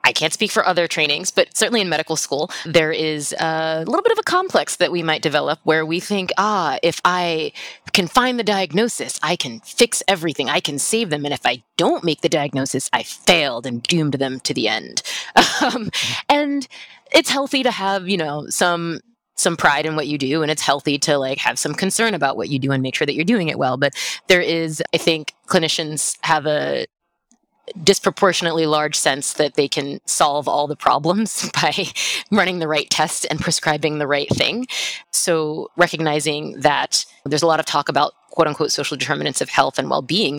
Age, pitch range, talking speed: 20-39, 150-195 Hz, 200 wpm